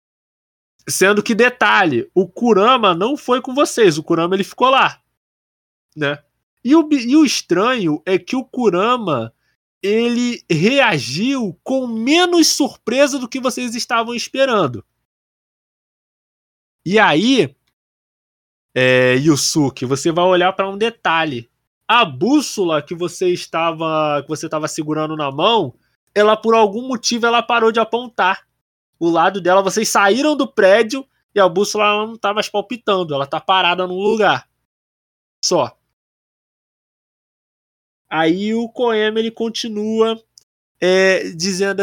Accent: Brazilian